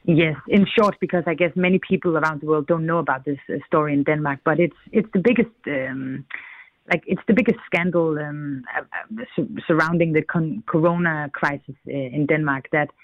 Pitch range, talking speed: 155-185 Hz, 200 wpm